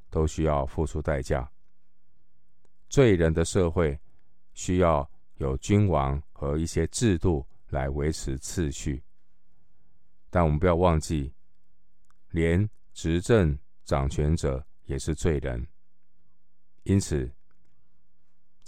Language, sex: Chinese, male